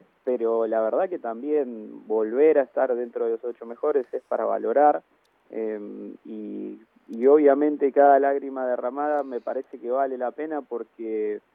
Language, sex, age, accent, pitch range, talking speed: Spanish, male, 20-39, Argentinian, 120-155 Hz, 155 wpm